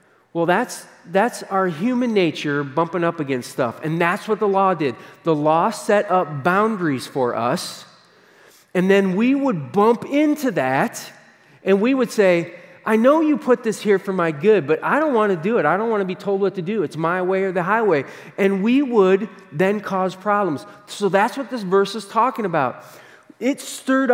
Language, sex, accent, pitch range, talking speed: English, male, American, 175-235 Hz, 200 wpm